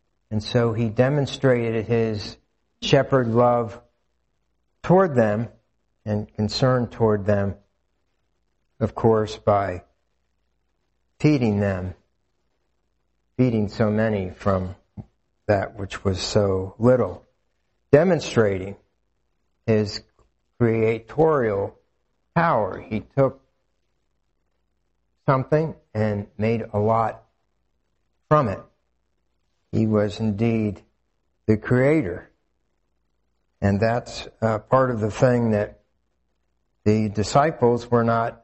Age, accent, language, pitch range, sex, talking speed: 60-79, American, English, 90-115 Hz, male, 90 wpm